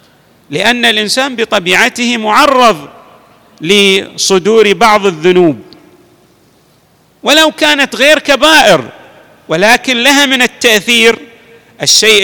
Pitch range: 195-265 Hz